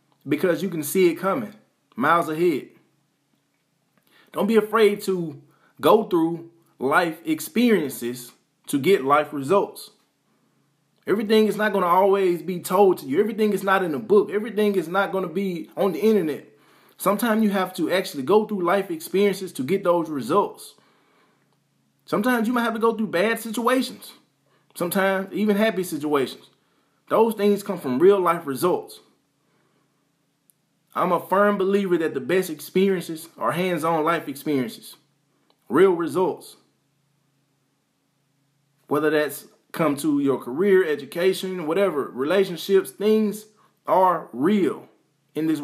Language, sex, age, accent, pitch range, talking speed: English, male, 20-39, American, 150-205 Hz, 135 wpm